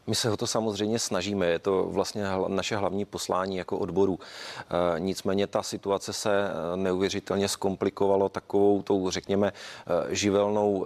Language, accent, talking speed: Czech, native, 135 wpm